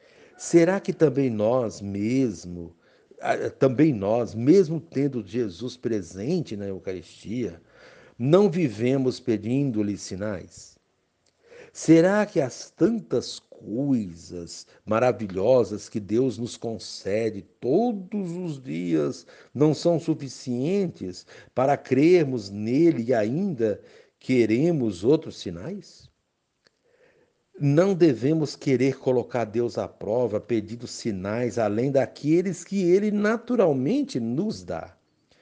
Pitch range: 110-170 Hz